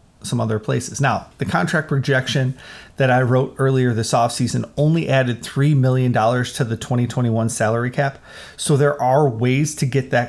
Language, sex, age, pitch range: English, male, 30-49, 115-140 Hz